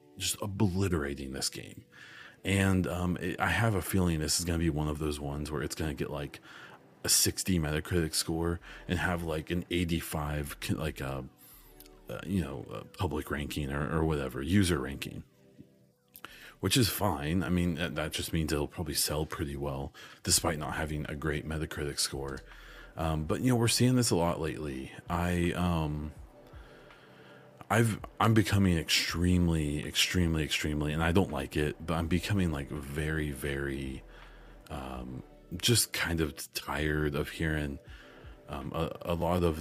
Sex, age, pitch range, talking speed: male, 30-49, 75-90 Hz, 160 wpm